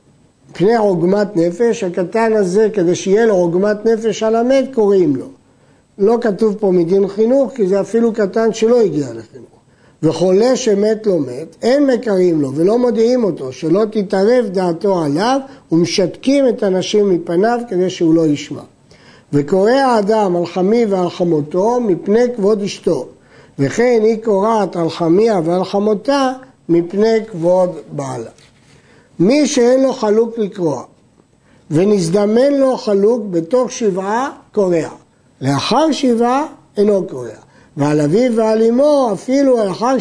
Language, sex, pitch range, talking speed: Hebrew, male, 180-235 Hz, 125 wpm